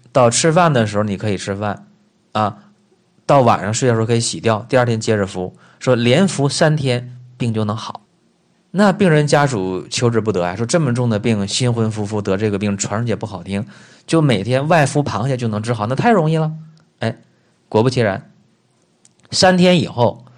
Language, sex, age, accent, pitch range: Chinese, male, 20-39, native, 100-145 Hz